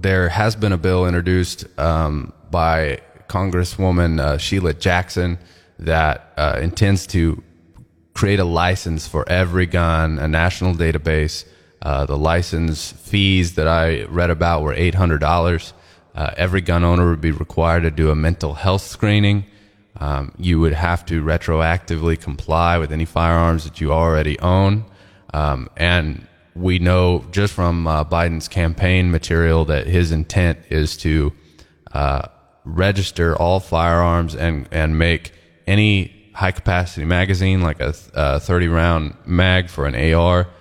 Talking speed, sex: 145 wpm, male